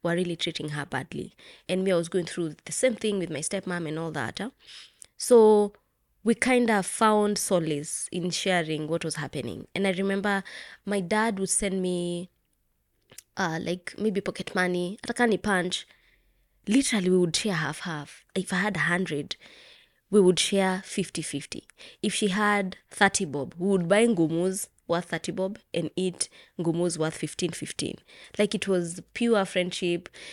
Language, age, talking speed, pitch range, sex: English, 20-39, 170 wpm, 170-205 Hz, female